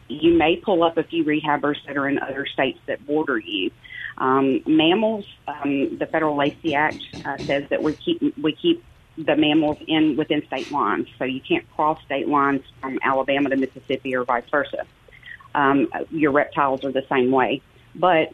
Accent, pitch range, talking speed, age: American, 140-160 Hz, 185 wpm, 40-59